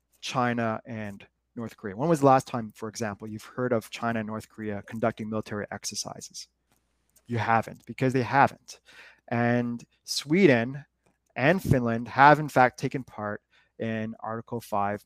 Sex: male